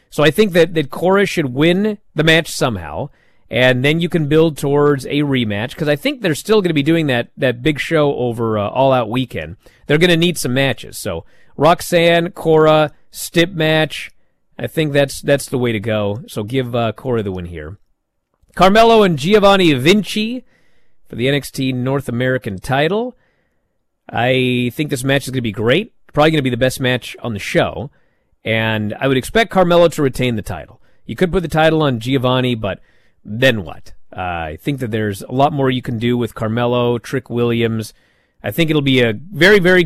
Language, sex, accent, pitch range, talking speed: English, male, American, 120-160 Hz, 200 wpm